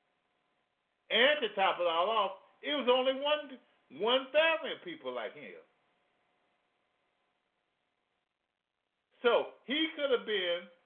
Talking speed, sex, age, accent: 105 wpm, male, 50-69, American